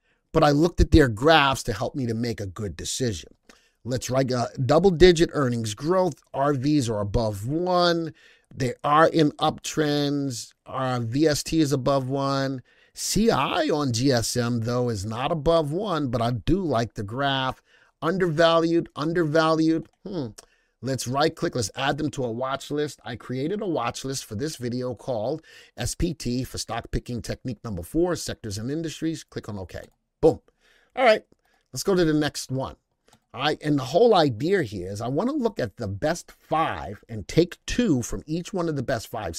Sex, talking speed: male, 180 wpm